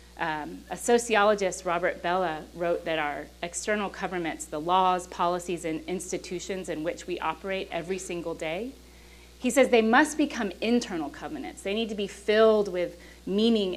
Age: 30-49